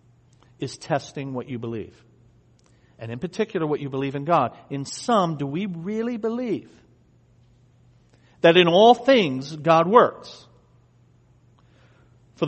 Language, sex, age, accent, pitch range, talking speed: English, male, 50-69, American, 120-185 Hz, 125 wpm